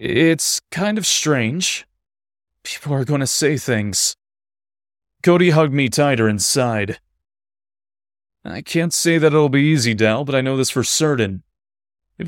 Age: 30-49